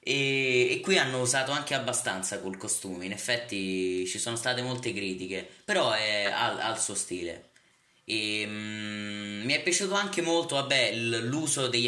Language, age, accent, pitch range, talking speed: Italian, 20-39, native, 105-130 Hz, 160 wpm